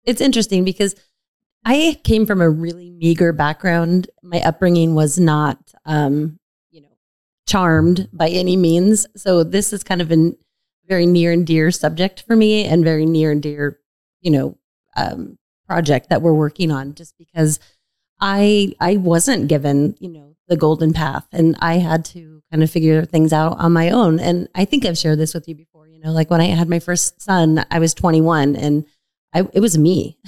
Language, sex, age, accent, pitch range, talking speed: English, female, 30-49, American, 155-180 Hz, 190 wpm